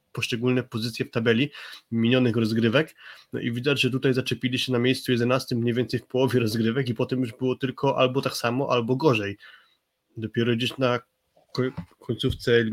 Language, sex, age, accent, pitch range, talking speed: Polish, male, 20-39, native, 115-130 Hz, 165 wpm